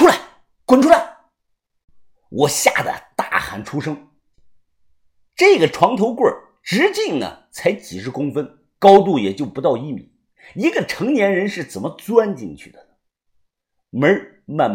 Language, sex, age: Chinese, male, 50-69